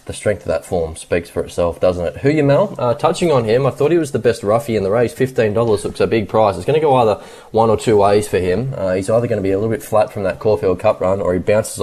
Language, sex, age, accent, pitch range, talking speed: English, male, 20-39, Australian, 95-120 Hz, 310 wpm